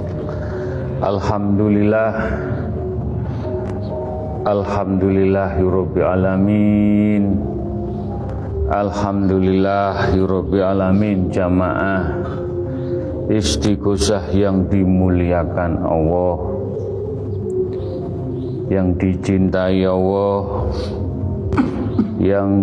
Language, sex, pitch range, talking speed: Indonesian, male, 95-100 Hz, 40 wpm